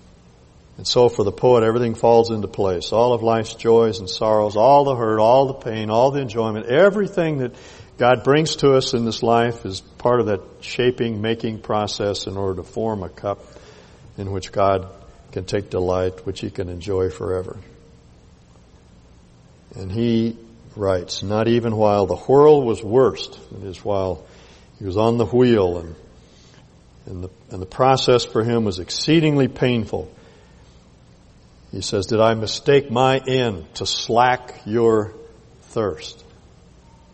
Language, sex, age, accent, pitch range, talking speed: English, male, 60-79, American, 95-125 Hz, 155 wpm